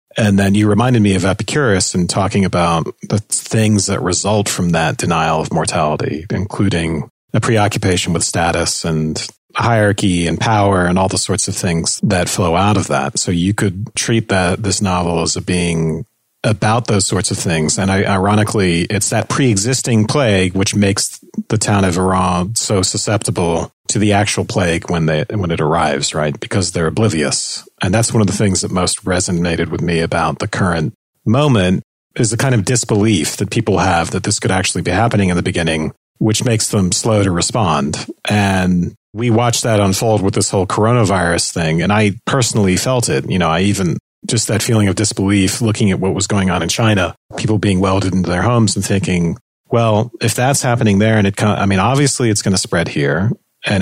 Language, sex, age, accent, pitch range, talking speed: English, male, 40-59, American, 95-110 Hz, 195 wpm